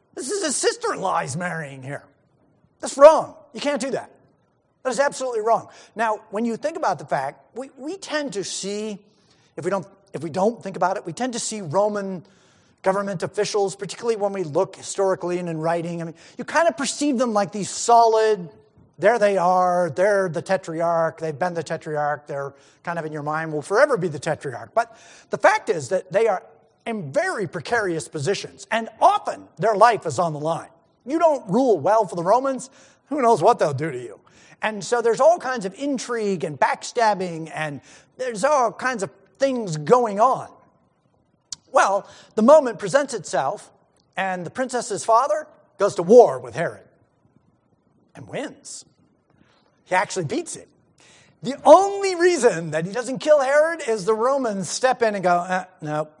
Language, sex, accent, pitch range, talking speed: English, male, American, 170-255 Hz, 190 wpm